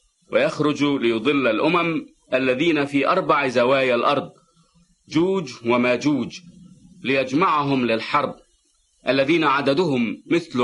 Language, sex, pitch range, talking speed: English, male, 130-190 Hz, 90 wpm